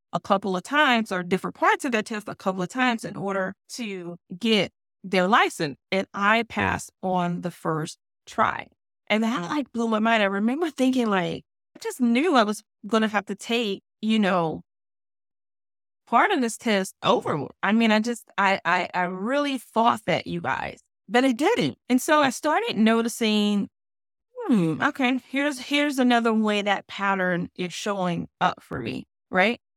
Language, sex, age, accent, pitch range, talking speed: English, female, 20-39, American, 180-235 Hz, 175 wpm